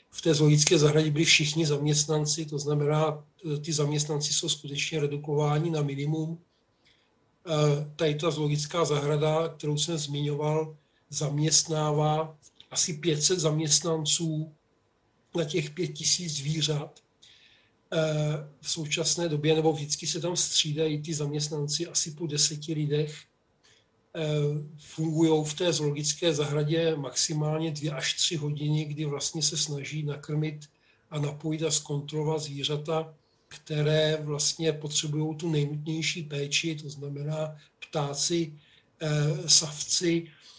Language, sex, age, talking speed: Czech, male, 40-59, 110 wpm